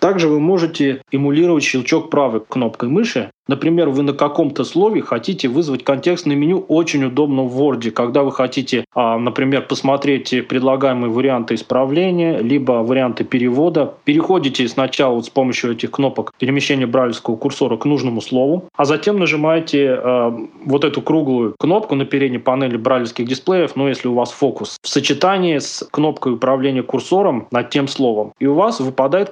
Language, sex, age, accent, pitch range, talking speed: Russian, male, 20-39, native, 130-155 Hz, 160 wpm